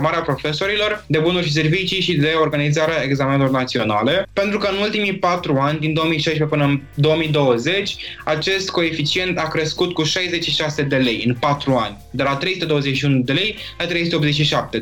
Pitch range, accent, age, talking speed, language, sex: 140-180 Hz, native, 20-39, 160 wpm, Romanian, male